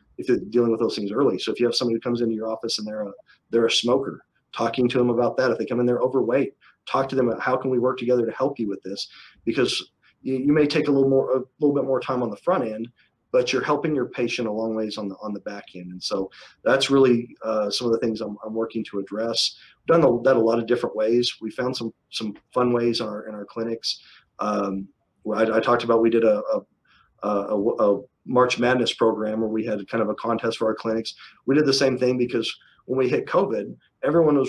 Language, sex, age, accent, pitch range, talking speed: English, male, 40-59, American, 110-125 Hz, 265 wpm